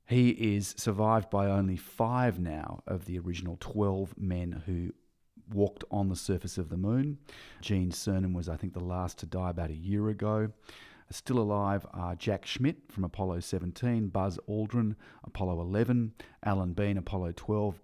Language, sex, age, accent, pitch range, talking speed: English, male, 40-59, Australian, 90-110 Hz, 165 wpm